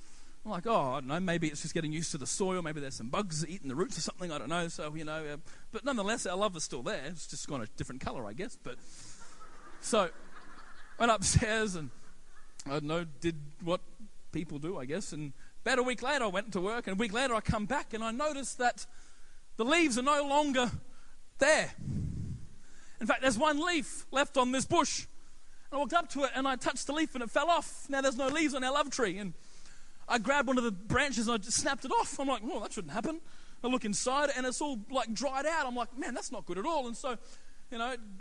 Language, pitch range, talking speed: English, 200-280 Hz, 245 wpm